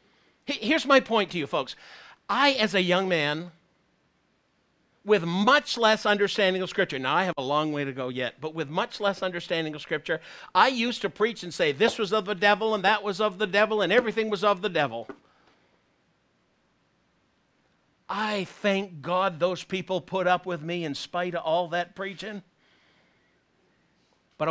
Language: English